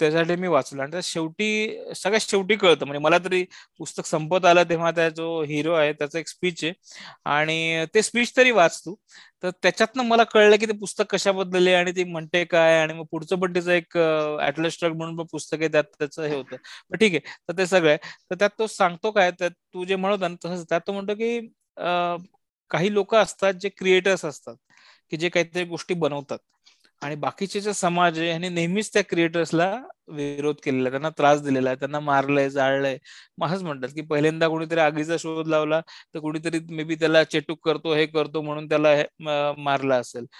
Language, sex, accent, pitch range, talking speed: Marathi, male, native, 155-190 Hz, 145 wpm